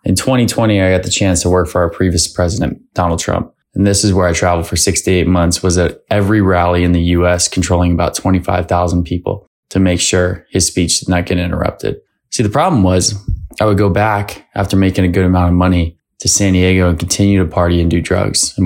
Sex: male